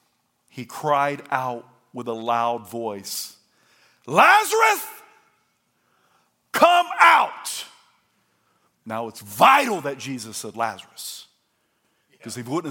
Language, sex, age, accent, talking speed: English, male, 50-69, American, 100 wpm